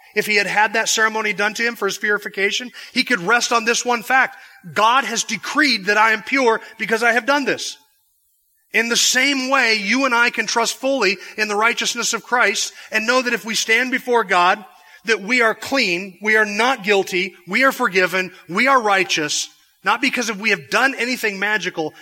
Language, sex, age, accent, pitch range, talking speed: English, male, 30-49, American, 180-230 Hz, 205 wpm